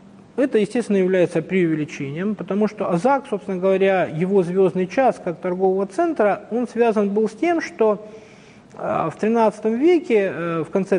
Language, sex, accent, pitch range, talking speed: Russian, male, native, 175-220 Hz, 140 wpm